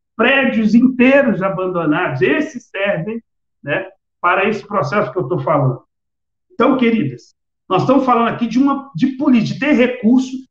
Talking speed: 150 wpm